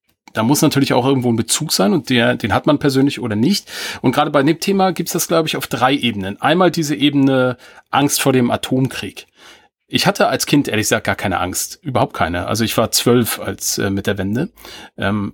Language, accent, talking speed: German, German, 225 wpm